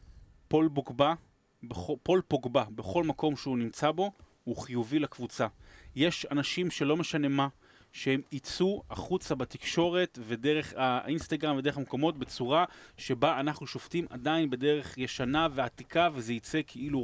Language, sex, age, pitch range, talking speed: Hebrew, male, 30-49, 130-160 Hz, 125 wpm